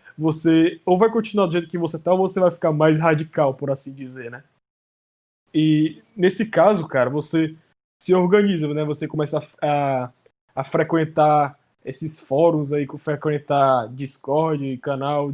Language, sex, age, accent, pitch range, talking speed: Portuguese, male, 20-39, Brazilian, 145-165 Hz, 155 wpm